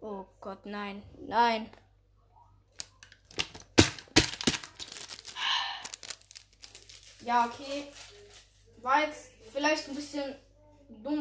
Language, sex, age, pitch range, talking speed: English, female, 10-29, 200-295 Hz, 65 wpm